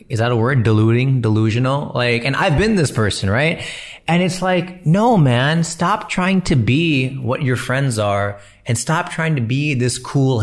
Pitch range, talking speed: 110-145 Hz, 190 wpm